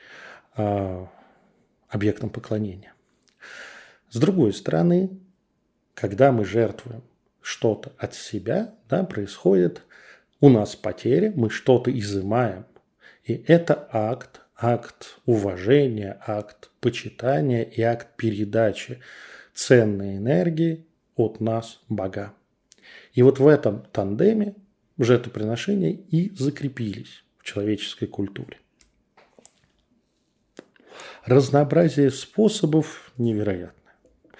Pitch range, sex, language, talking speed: 105-140 Hz, male, Russian, 80 wpm